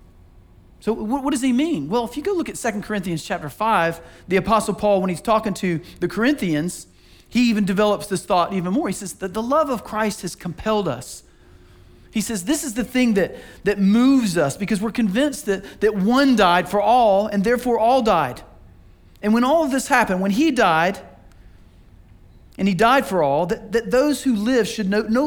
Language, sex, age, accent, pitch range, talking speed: English, male, 40-59, American, 175-245 Hz, 205 wpm